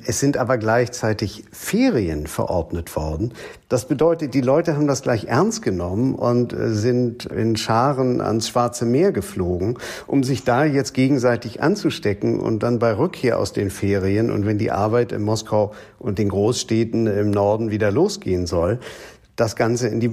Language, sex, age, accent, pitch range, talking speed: German, male, 50-69, German, 100-125 Hz, 165 wpm